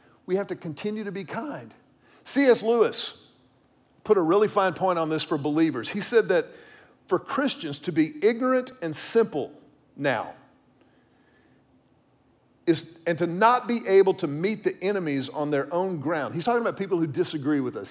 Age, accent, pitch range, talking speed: 50-69, American, 160-240 Hz, 170 wpm